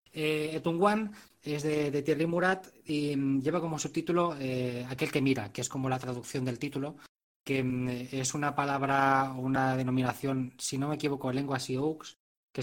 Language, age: Spanish, 20-39